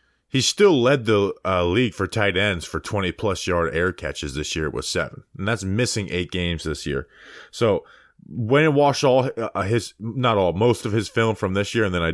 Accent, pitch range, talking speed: American, 90-125 Hz, 215 wpm